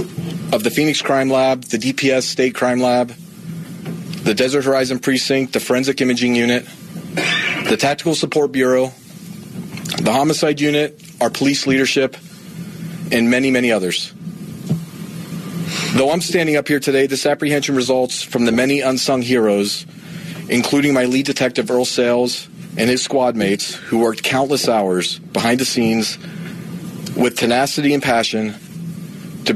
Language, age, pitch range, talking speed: English, 40-59, 125-175 Hz, 140 wpm